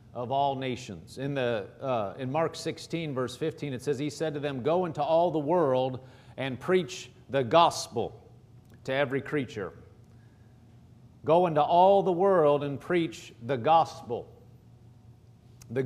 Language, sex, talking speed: English, male, 150 wpm